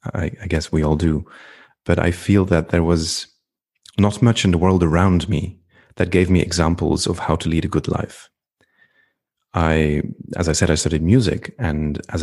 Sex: male